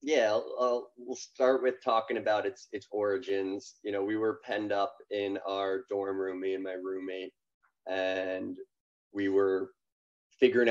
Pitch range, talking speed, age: 95-125 Hz, 165 wpm, 20-39